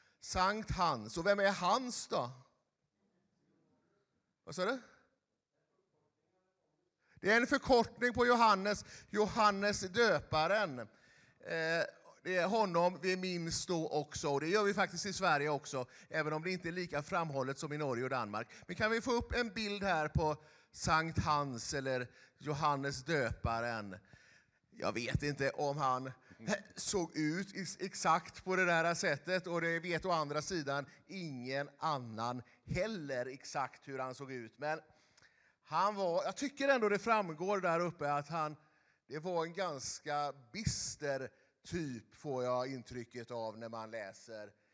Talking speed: 150 wpm